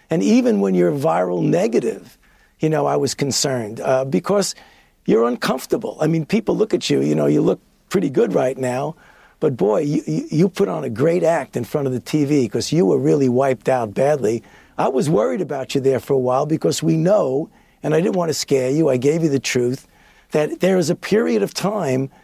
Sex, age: male, 50-69